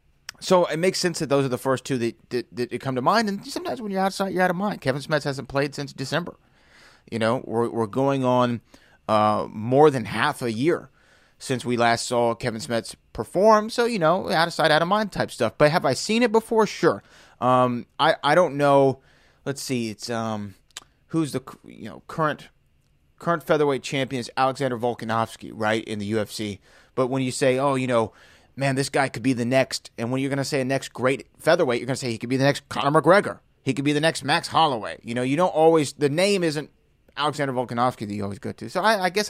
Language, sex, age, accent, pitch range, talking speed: English, male, 30-49, American, 125-185 Hz, 235 wpm